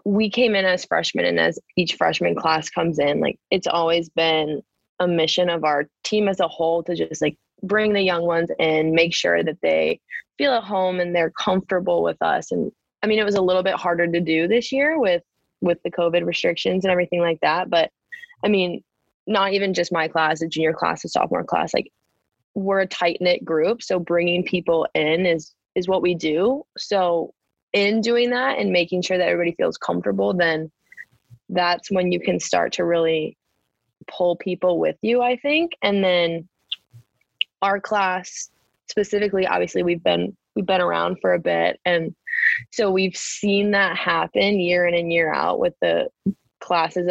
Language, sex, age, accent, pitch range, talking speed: English, female, 20-39, American, 165-200 Hz, 190 wpm